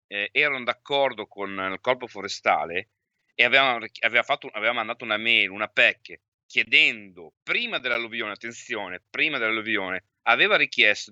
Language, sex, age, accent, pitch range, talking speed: Italian, male, 30-49, native, 100-125 Hz, 140 wpm